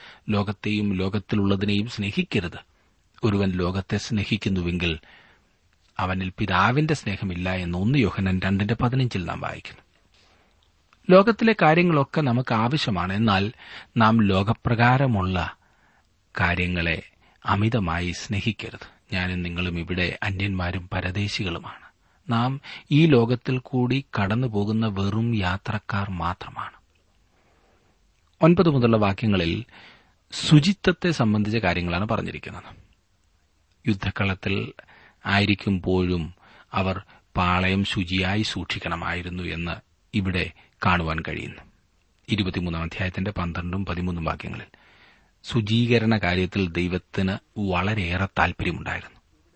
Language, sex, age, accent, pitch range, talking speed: Malayalam, male, 30-49, native, 90-110 Hz, 75 wpm